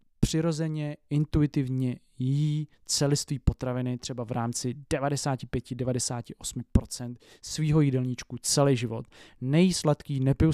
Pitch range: 130-160 Hz